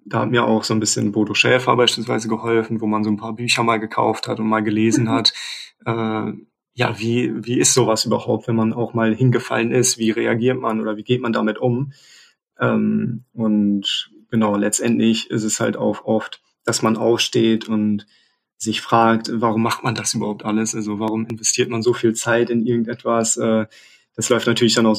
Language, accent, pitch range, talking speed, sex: German, German, 110-120 Hz, 195 wpm, male